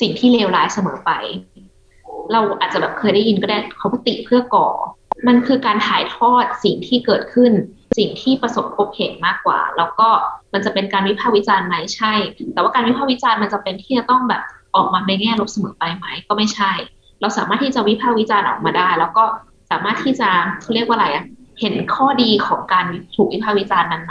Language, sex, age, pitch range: Thai, female, 20-39, 190-235 Hz